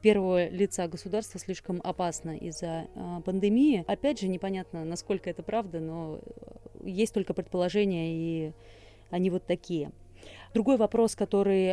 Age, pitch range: 30-49, 185-215 Hz